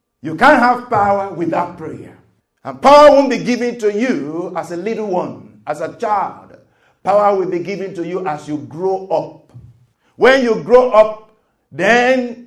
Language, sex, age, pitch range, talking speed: English, male, 50-69, 160-235 Hz, 170 wpm